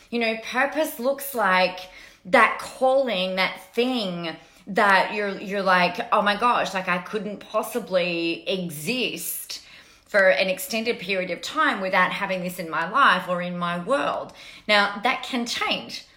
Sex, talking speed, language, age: female, 150 wpm, English, 30-49